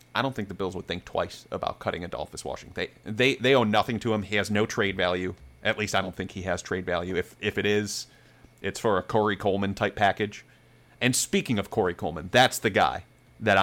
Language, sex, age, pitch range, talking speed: English, male, 30-49, 100-140 Hz, 235 wpm